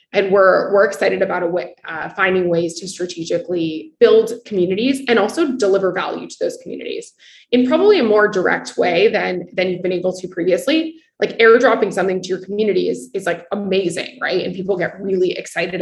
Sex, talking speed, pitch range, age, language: female, 190 wpm, 175-230 Hz, 20-39, English